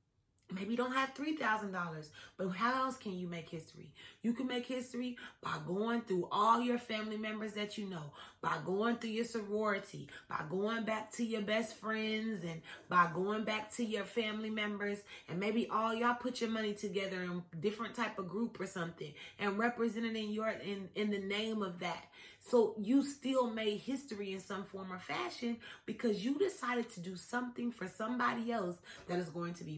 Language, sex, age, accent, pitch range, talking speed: English, female, 30-49, American, 180-230 Hz, 195 wpm